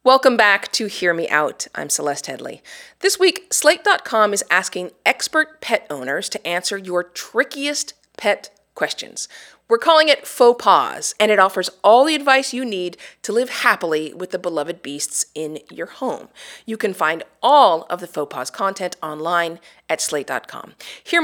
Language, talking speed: English, 165 wpm